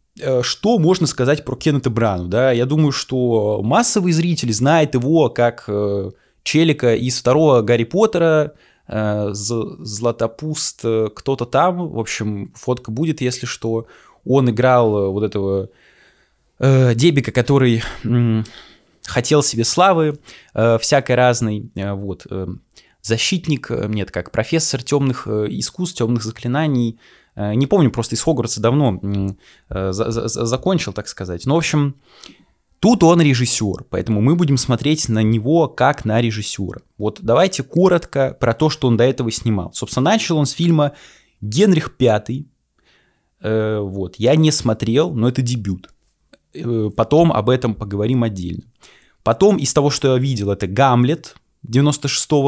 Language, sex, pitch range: Russian, male, 110-145 Hz